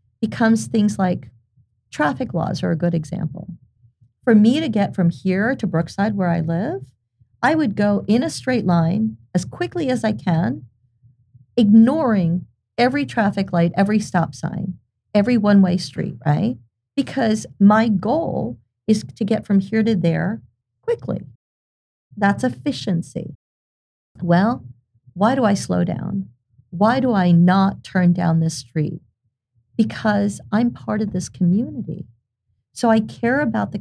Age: 50-69